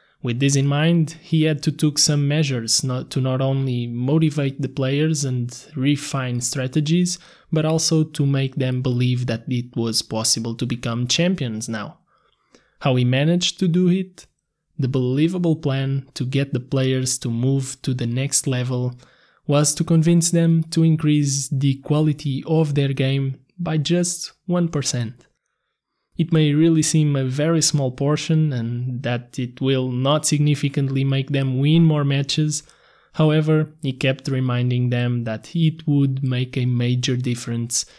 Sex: male